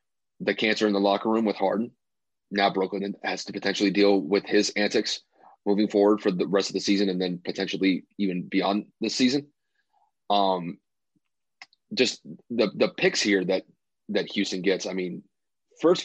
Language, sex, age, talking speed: English, male, 30-49, 170 wpm